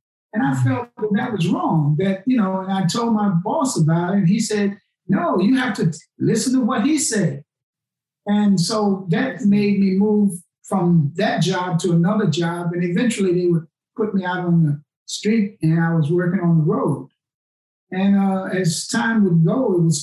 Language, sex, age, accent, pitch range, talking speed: English, male, 50-69, American, 160-195 Hz, 200 wpm